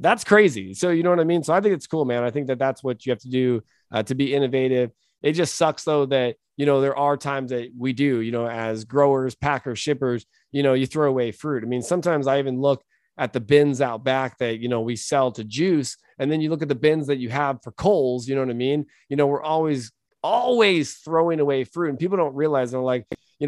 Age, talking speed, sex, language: 20-39, 260 wpm, male, English